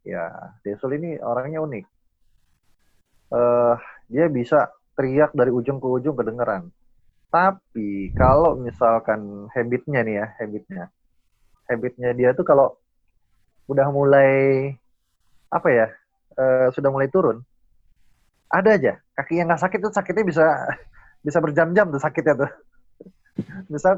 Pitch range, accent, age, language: 115-160 Hz, native, 20-39, Indonesian